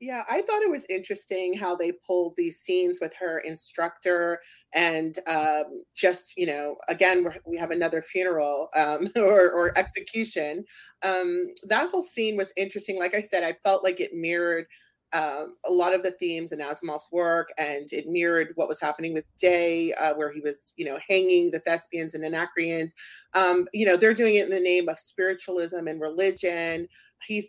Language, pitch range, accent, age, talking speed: English, 165-195 Hz, American, 30-49, 185 wpm